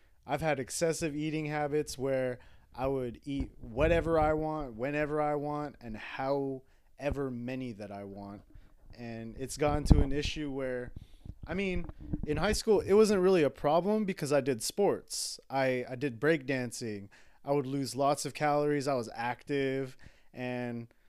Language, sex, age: English, male, 30-49